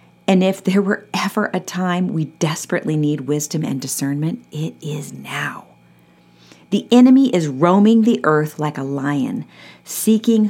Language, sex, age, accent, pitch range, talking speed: English, female, 40-59, American, 150-210 Hz, 150 wpm